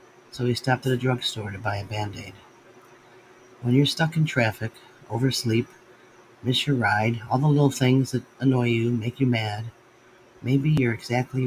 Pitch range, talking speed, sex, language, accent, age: 110-130 Hz, 165 wpm, male, English, American, 40-59